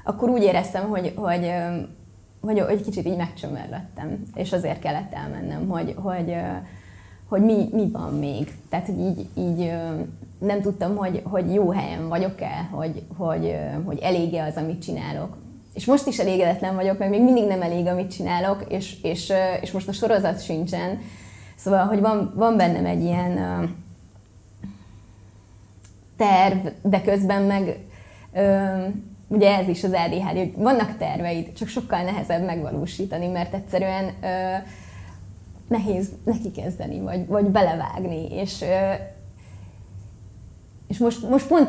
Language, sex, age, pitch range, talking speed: Hungarian, female, 20-39, 160-200 Hz, 140 wpm